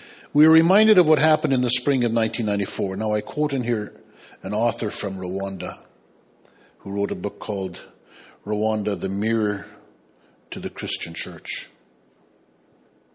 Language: English